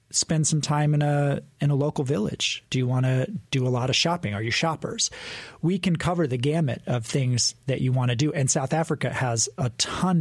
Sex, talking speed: male, 230 wpm